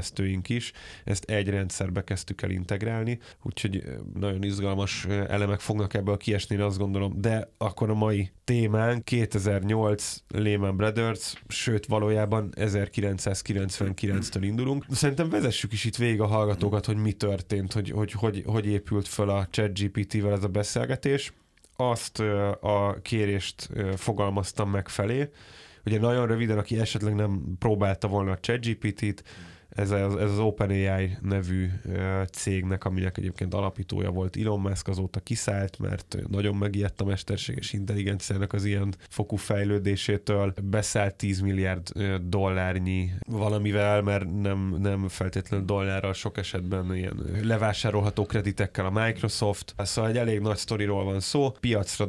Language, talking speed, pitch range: Hungarian, 130 wpm, 95-110 Hz